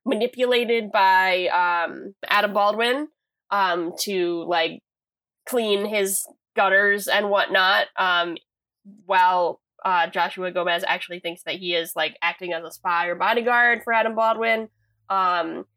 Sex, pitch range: female, 175-235 Hz